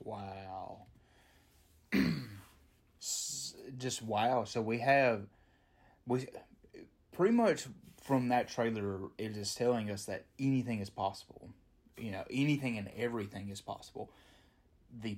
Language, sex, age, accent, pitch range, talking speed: English, male, 30-49, American, 100-120 Hz, 105 wpm